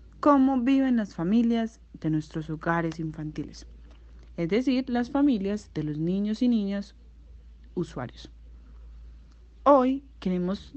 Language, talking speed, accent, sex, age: Spanish, 110 wpm, Colombian, female, 30-49